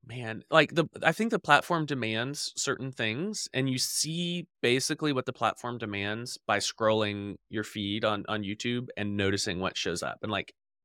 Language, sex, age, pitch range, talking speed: English, male, 20-39, 110-145 Hz, 175 wpm